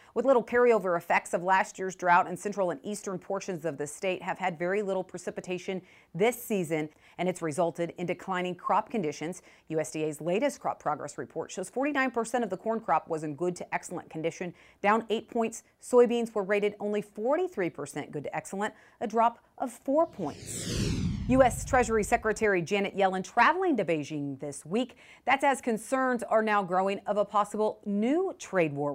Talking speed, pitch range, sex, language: 170 wpm, 175-230 Hz, female, English